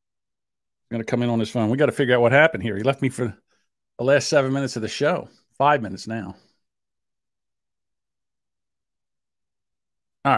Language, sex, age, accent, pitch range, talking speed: English, male, 50-69, American, 115-170 Hz, 175 wpm